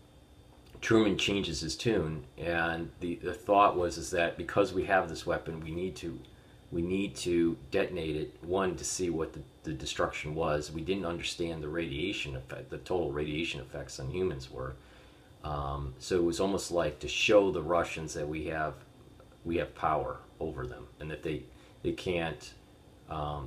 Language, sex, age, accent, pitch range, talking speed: English, male, 40-59, American, 70-85 Hz, 175 wpm